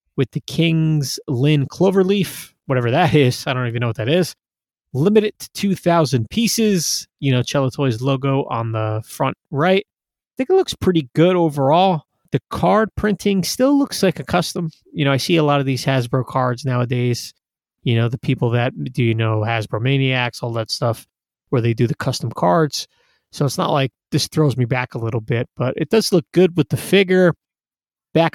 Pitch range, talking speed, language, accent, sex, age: 125-165 Hz, 195 wpm, English, American, male, 30-49